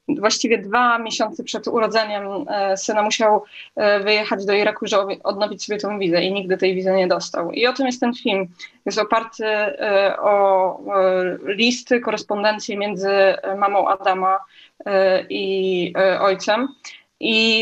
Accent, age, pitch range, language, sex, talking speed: native, 20-39, 200-245 Hz, Polish, female, 130 wpm